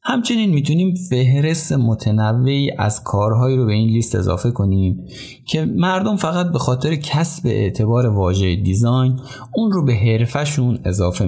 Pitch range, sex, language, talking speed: 100-145 Hz, male, Persian, 140 wpm